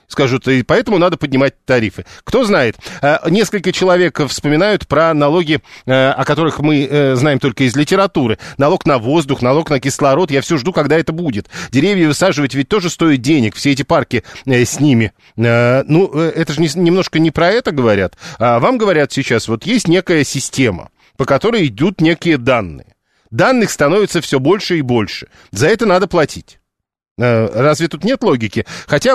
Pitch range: 130-165 Hz